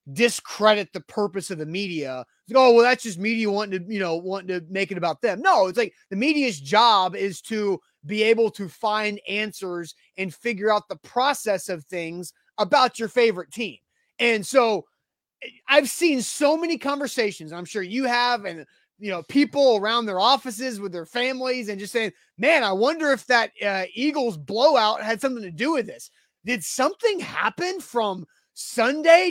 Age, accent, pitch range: 30-49, American, 190-260 Hz